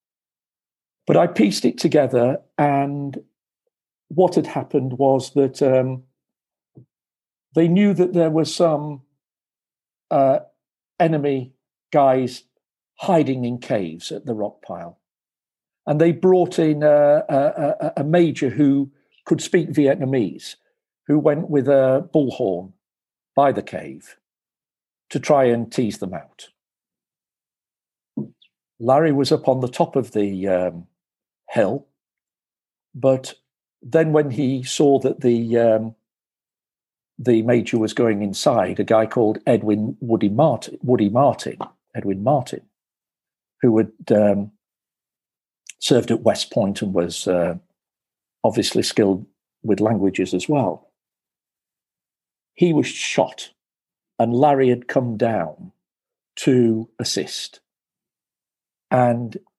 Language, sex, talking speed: English, male, 115 wpm